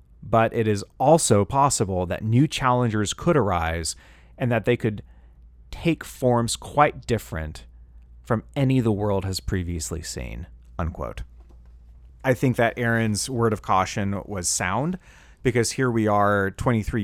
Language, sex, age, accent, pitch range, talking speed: English, male, 30-49, American, 85-120 Hz, 135 wpm